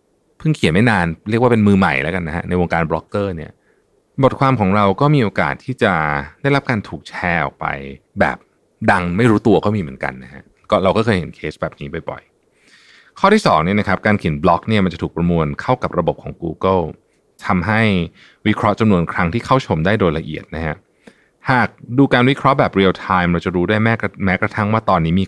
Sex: male